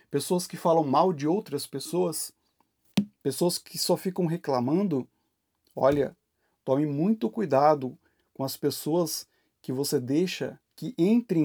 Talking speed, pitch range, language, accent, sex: 125 wpm, 150-210 Hz, Portuguese, Brazilian, male